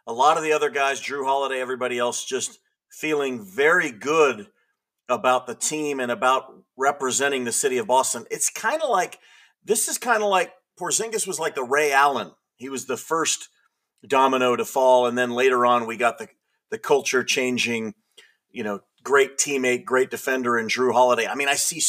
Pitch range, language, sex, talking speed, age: 125-200 Hz, English, male, 190 wpm, 40-59